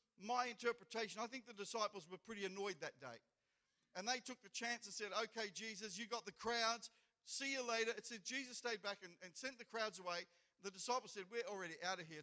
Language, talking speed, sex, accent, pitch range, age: English, 225 wpm, male, Australian, 180-235 Hz, 50-69